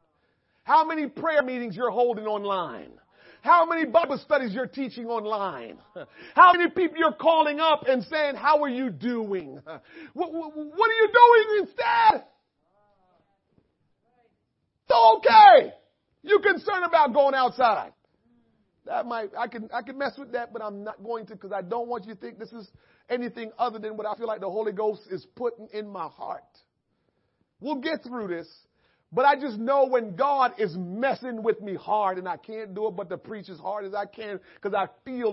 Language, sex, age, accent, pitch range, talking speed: English, male, 40-59, American, 215-320 Hz, 185 wpm